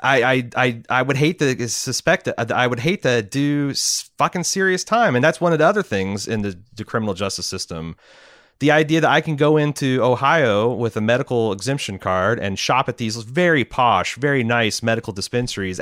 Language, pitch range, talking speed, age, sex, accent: English, 105-150 Hz, 195 wpm, 30-49, male, American